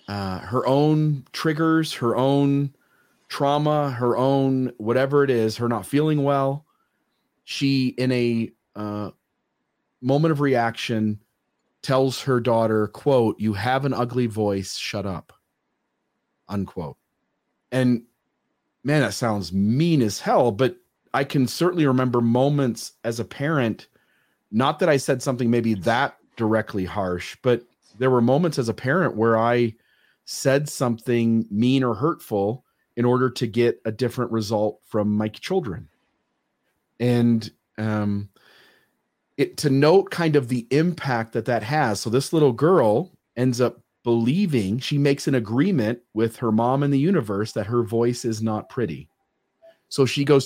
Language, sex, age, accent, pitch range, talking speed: English, male, 30-49, American, 115-140 Hz, 145 wpm